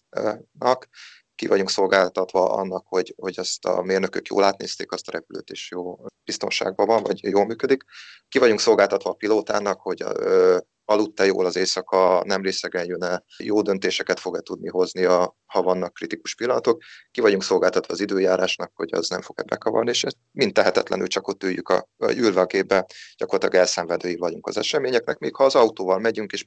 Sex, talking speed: male, 175 wpm